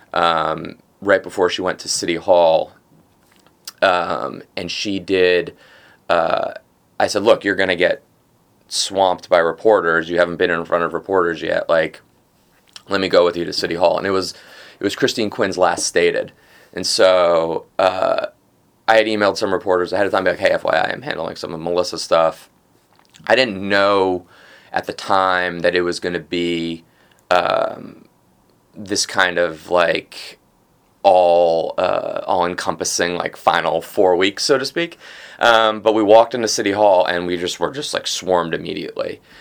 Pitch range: 85-100 Hz